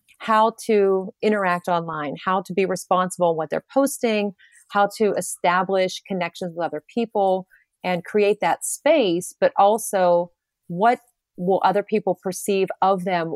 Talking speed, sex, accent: 140 wpm, female, American